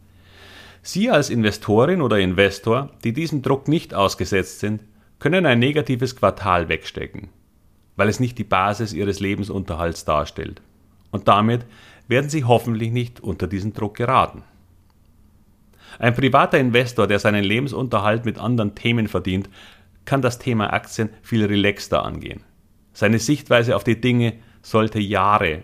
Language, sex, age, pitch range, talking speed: German, male, 40-59, 95-120 Hz, 135 wpm